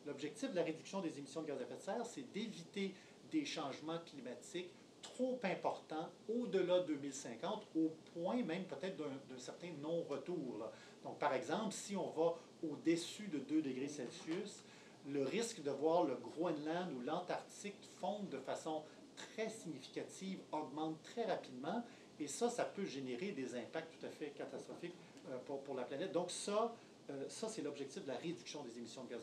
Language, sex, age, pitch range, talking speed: French, male, 30-49, 140-195 Hz, 175 wpm